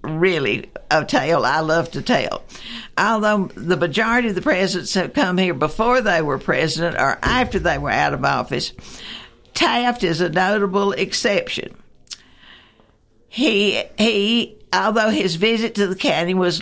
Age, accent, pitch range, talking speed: 60-79, American, 170-210 Hz, 150 wpm